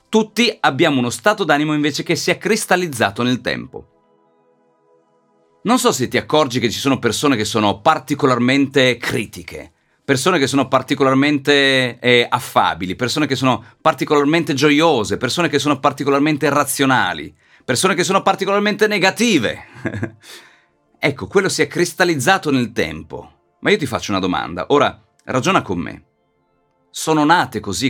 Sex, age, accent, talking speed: male, 40-59, native, 140 wpm